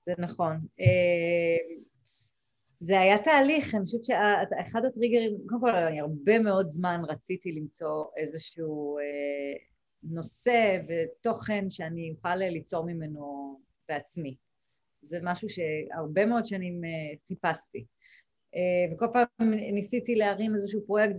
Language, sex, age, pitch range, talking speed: Hebrew, female, 30-49, 160-215 Hz, 115 wpm